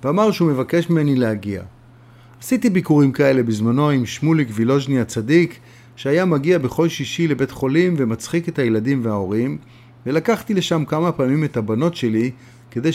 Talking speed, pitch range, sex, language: 145 wpm, 120-165 Hz, male, Hebrew